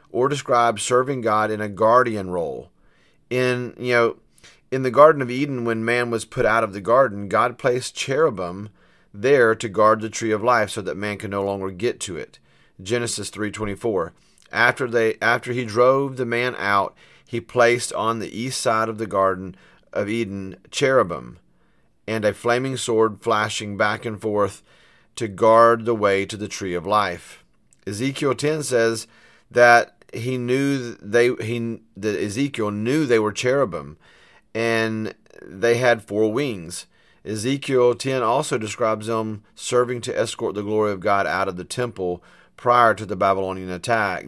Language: English